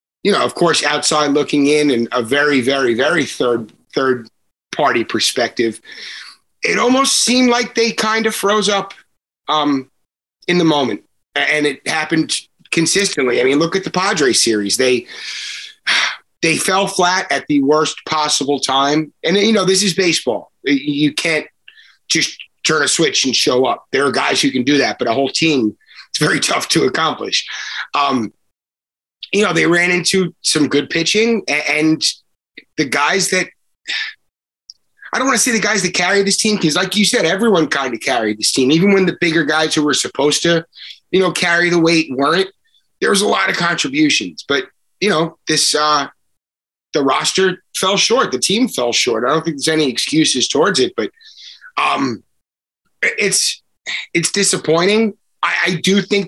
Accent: American